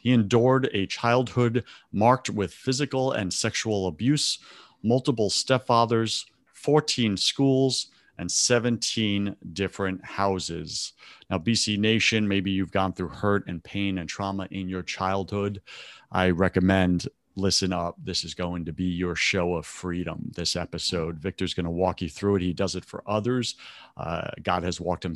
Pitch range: 95-115 Hz